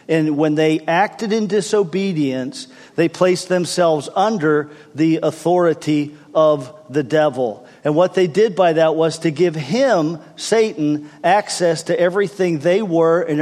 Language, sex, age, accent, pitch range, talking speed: English, male, 50-69, American, 150-175 Hz, 145 wpm